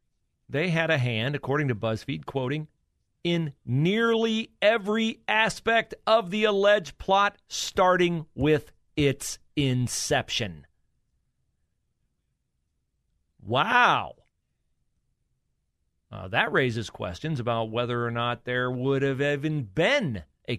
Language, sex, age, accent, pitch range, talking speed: English, male, 40-59, American, 125-200 Hz, 100 wpm